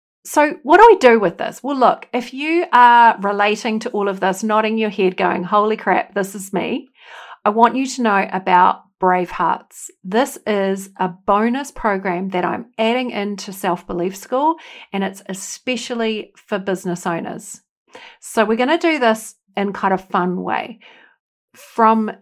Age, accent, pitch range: 50-69, Australian, 195-255 Hz